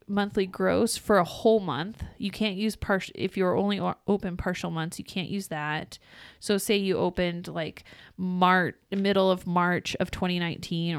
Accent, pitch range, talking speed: American, 170-205 Hz, 170 wpm